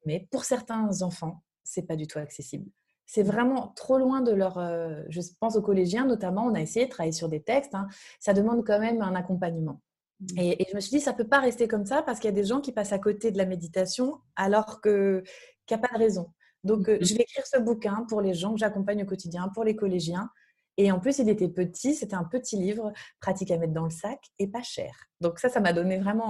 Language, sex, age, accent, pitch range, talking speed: French, female, 30-49, French, 175-225 Hz, 250 wpm